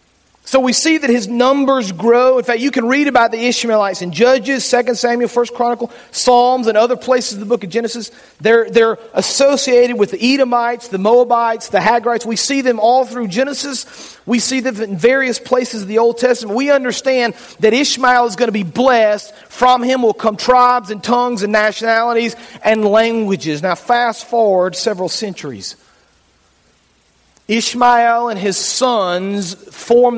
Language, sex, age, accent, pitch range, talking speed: English, male, 40-59, American, 200-245 Hz, 170 wpm